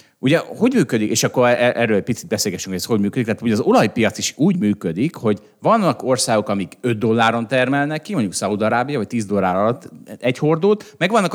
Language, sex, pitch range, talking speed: Hungarian, male, 110-145 Hz, 195 wpm